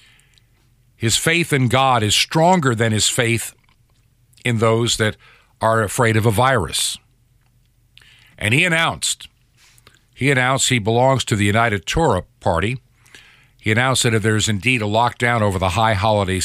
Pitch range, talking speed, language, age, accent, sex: 110-130 Hz, 150 wpm, English, 50-69, American, male